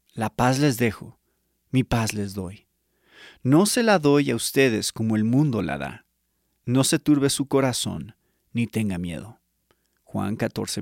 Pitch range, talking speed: 105-135 Hz, 160 wpm